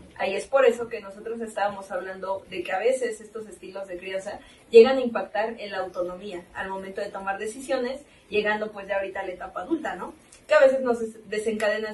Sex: female